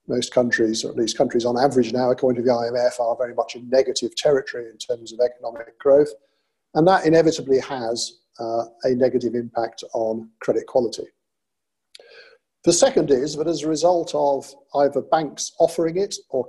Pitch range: 120-145 Hz